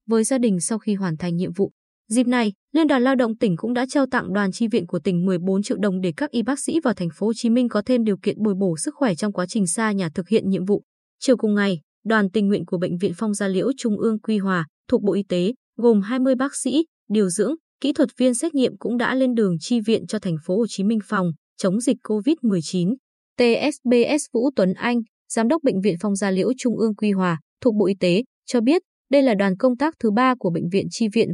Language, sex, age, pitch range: Vietnamese, female, 20-39, 190-250 Hz